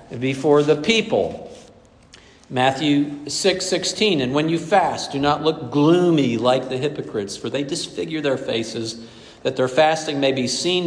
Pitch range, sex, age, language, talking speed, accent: 120-155 Hz, male, 50-69, English, 155 wpm, American